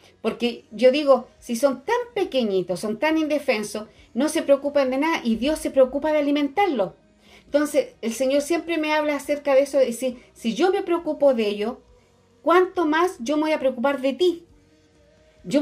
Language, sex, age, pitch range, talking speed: Spanish, female, 40-59, 230-305 Hz, 185 wpm